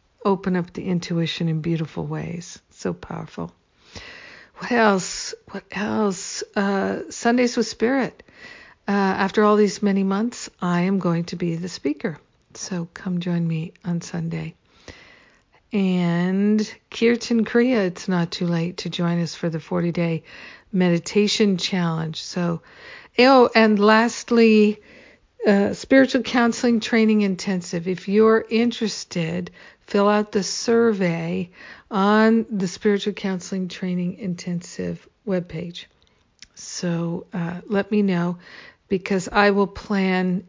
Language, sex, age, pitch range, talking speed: English, female, 50-69, 175-210 Hz, 125 wpm